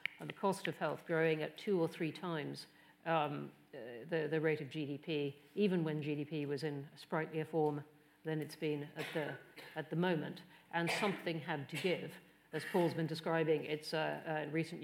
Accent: British